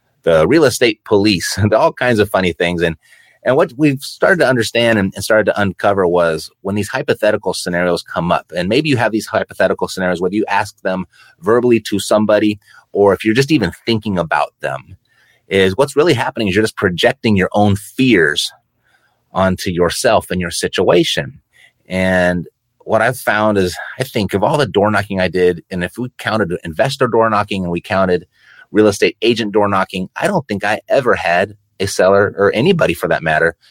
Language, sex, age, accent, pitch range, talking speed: English, male, 30-49, American, 90-115 Hz, 190 wpm